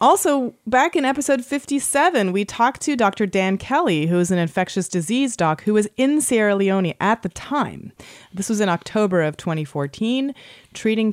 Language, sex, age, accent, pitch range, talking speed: English, female, 30-49, American, 165-220 Hz, 175 wpm